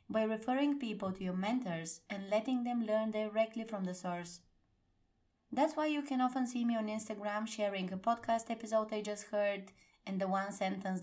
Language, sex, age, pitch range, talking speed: English, female, 20-39, 185-230 Hz, 185 wpm